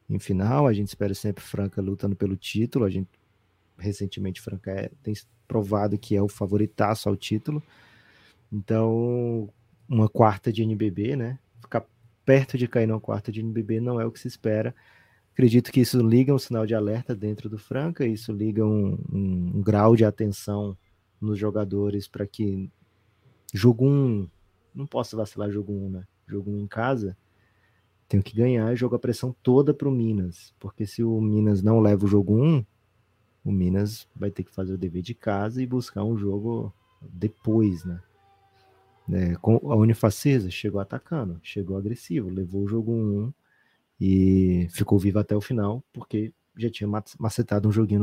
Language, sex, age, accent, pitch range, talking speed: Portuguese, male, 20-39, Brazilian, 100-115 Hz, 175 wpm